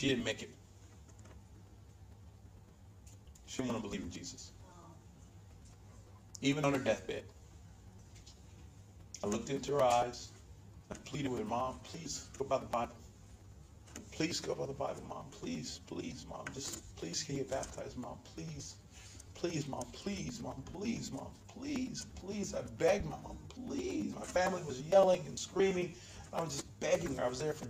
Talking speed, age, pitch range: 165 wpm, 40-59, 95-135 Hz